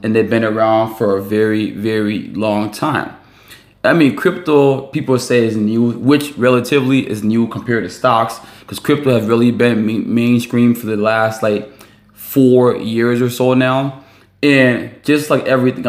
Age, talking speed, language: 20-39, 165 wpm, English